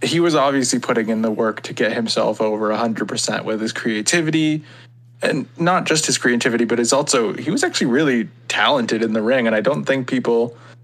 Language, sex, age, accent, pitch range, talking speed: English, male, 20-39, American, 115-130 Hz, 210 wpm